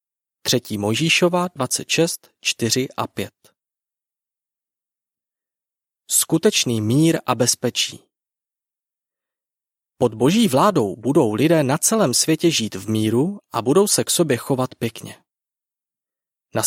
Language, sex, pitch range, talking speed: Czech, male, 120-165 Hz, 105 wpm